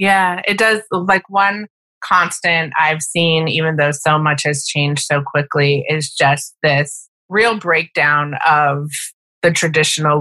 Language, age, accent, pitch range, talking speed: English, 30-49, American, 145-165 Hz, 140 wpm